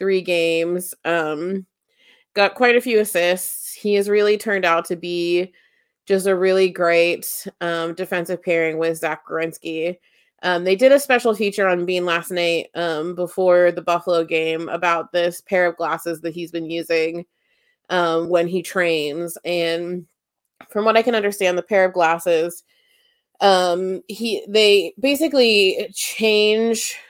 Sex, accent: female, American